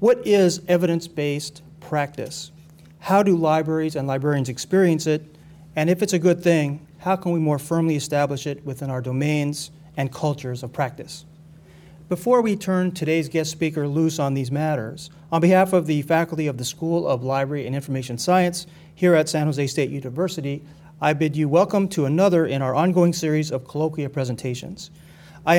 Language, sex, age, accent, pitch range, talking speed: English, male, 40-59, American, 145-170 Hz, 175 wpm